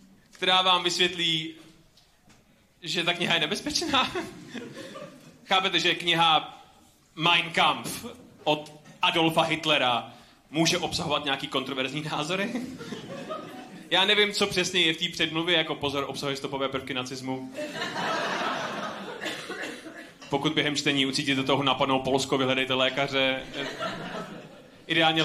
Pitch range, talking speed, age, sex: 145-185 Hz, 105 wpm, 30-49, male